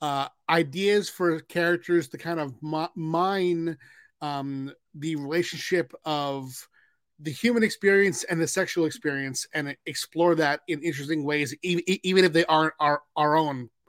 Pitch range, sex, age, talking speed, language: 150-180 Hz, male, 30-49, 140 wpm, English